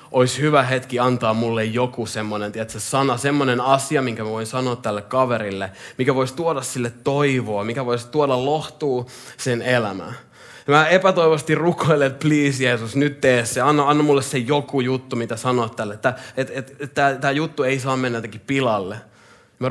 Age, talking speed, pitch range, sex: 20-39, 165 wpm, 100-130 Hz, male